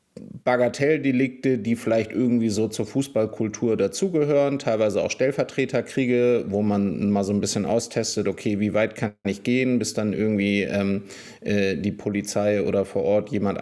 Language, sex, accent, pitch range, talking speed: German, male, German, 105-125 Hz, 155 wpm